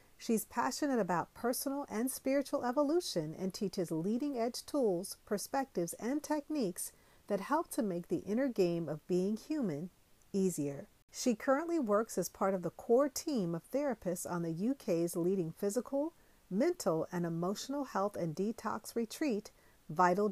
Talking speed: 145 wpm